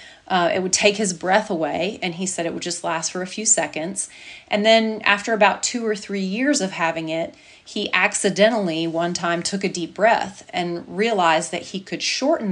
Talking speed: 205 wpm